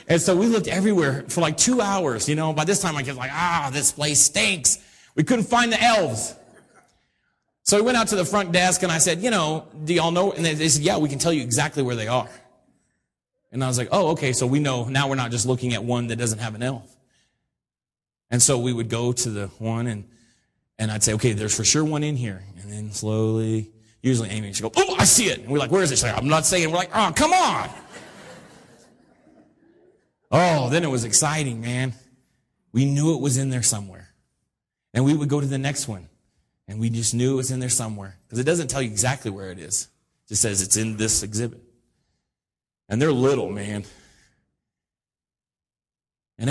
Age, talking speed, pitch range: 30-49, 220 wpm, 110-150 Hz